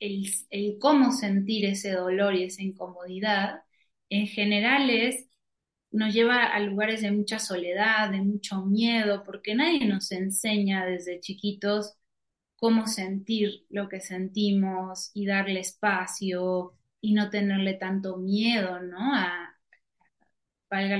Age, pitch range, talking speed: 20-39, 190-230 Hz, 125 wpm